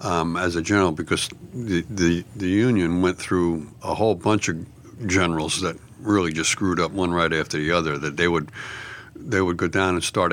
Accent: American